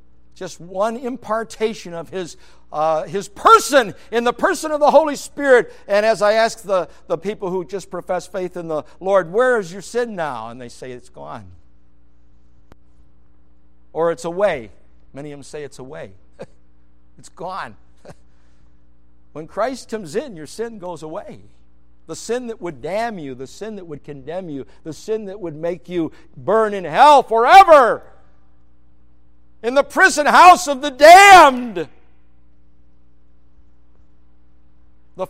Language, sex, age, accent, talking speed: English, male, 60-79, American, 150 wpm